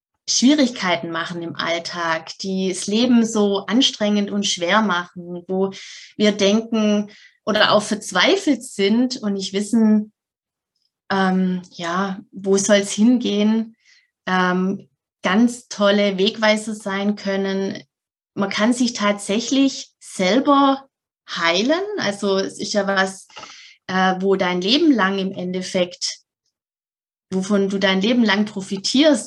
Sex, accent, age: female, German, 20-39